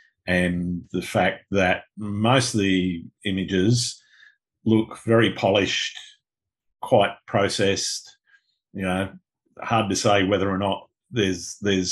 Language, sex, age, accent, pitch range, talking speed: English, male, 50-69, Australian, 95-110 Hz, 110 wpm